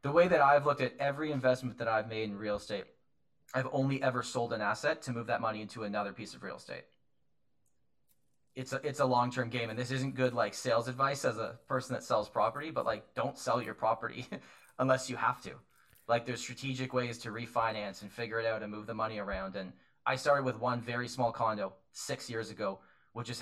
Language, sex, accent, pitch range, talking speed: English, male, American, 100-130 Hz, 225 wpm